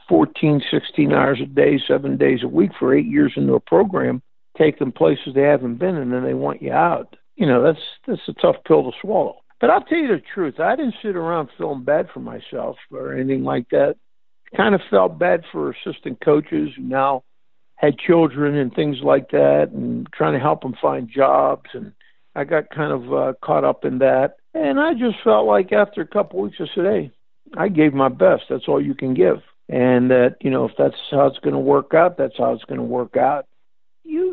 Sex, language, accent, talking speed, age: male, English, American, 220 wpm, 60-79